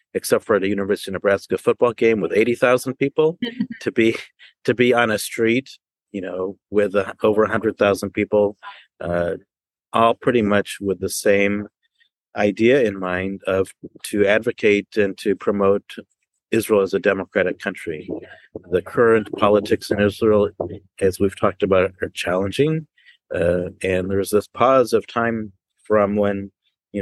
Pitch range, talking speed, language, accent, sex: 95-110 Hz, 150 wpm, English, American, male